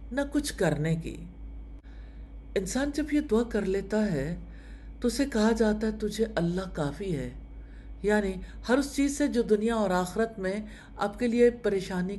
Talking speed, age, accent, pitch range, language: 165 wpm, 50-69, Indian, 140-215 Hz, English